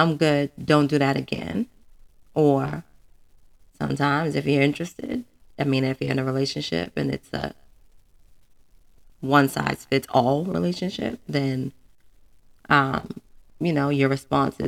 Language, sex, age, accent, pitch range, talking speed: English, female, 20-39, American, 135-165 Hz, 130 wpm